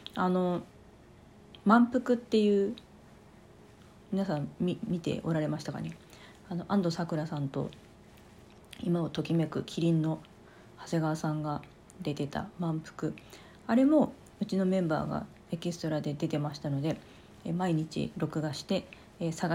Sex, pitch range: female, 155-190 Hz